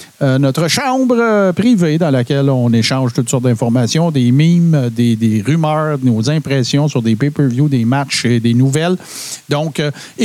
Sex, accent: male, Canadian